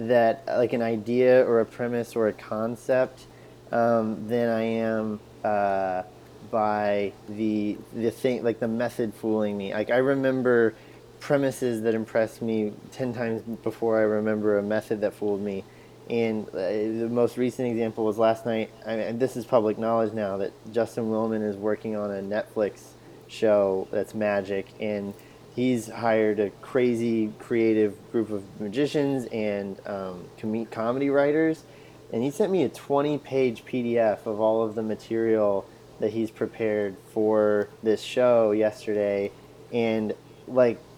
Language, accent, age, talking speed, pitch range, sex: English, American, 20-39, 150 wpm, 105-120 Hz, male